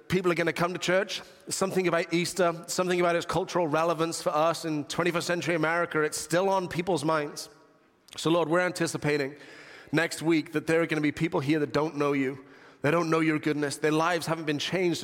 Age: 30-49